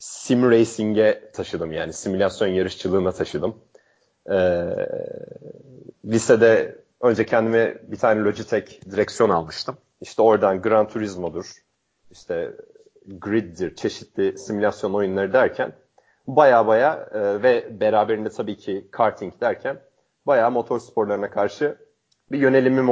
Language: Turkish